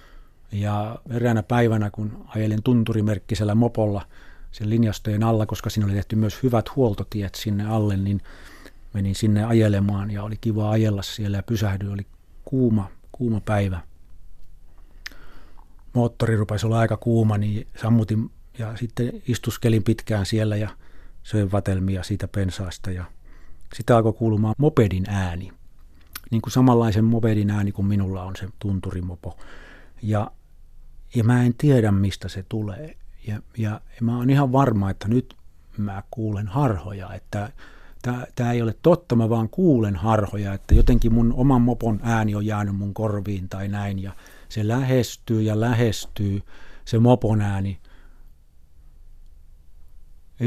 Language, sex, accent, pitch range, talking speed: Finnish, male, native, 95-115 Hz, 140 wpm